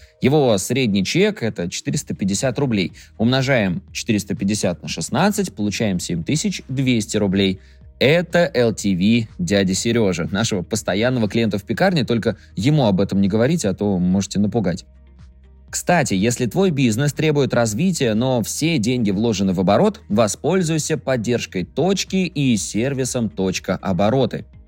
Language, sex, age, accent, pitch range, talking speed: Russian, male, 20-39, native, 100-145 Hz, 125 wpm